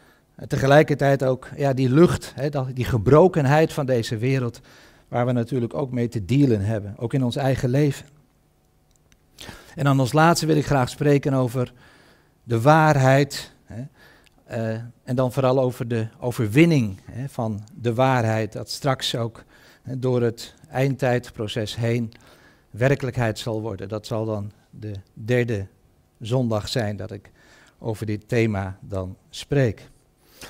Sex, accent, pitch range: male, Dutch, 115-145 Hz